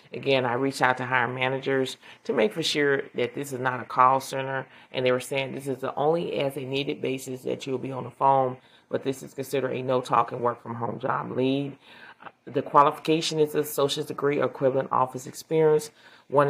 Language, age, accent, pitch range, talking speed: English, 30-49, American, 125-140 Hz, 205 wpm